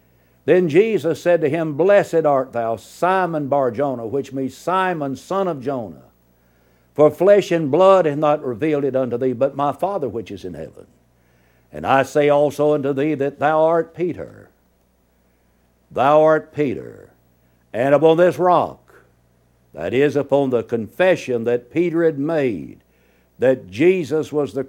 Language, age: English, 60-79